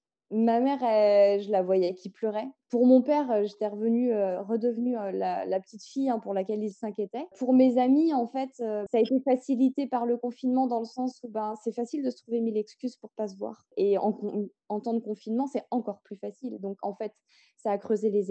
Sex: female